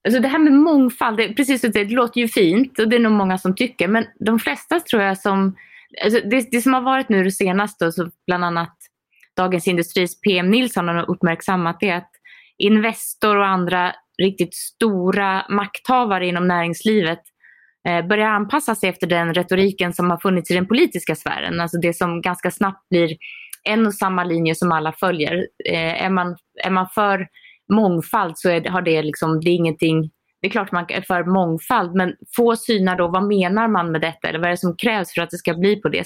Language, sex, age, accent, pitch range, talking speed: Swedish, female, 20-39, native, 175-220 Hz, 205 wpm